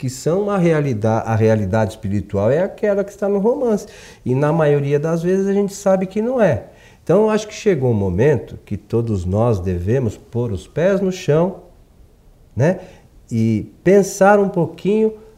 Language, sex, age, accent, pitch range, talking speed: Portuguese, male, 50-69, Brazilian, 120-195 Hz, 175 wpm